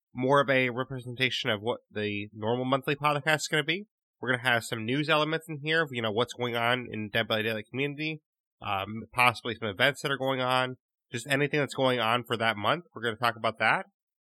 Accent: American